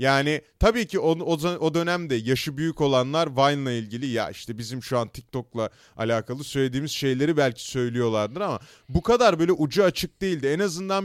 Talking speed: 170 wpm